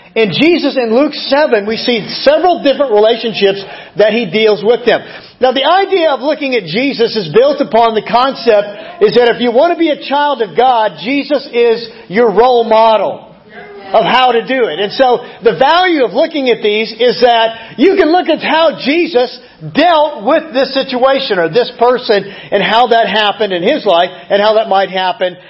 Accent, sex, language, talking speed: American, male, English, 195 wpm